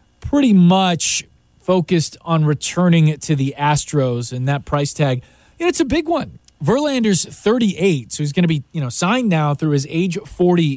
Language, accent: English, American